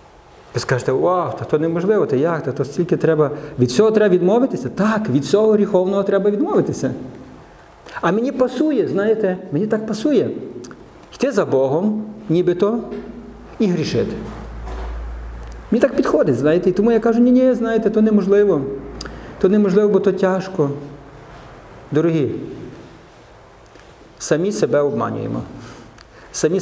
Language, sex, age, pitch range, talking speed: Ukrainian, male, 50-69, 140-220 Hz, 125 wpm